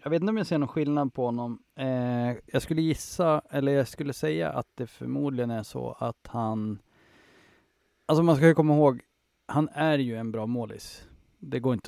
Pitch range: 110-135 Hz